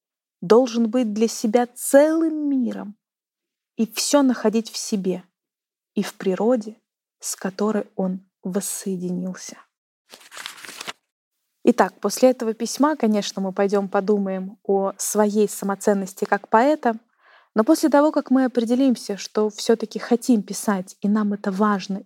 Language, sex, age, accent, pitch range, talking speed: Russian, female, 20-39, native, 205-255 Hz, 120 wpm